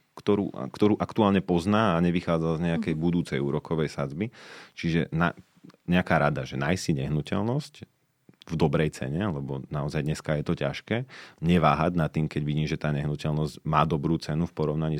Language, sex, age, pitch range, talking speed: Slovak, male, 40-59, 75-85 Hz, 160 wpm